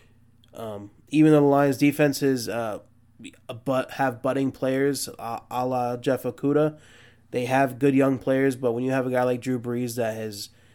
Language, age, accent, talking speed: English, 20-39, American, 180 wpm